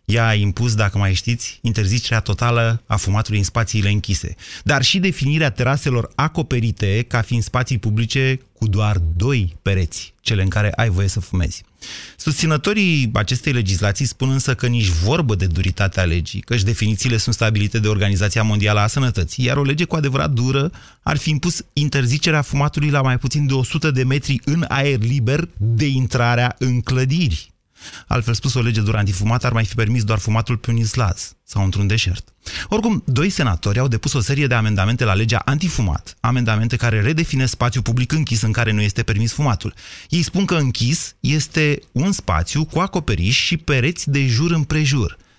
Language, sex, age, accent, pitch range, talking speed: Romanian, male, 30-49, native, 105-135 Hz, 175 wpm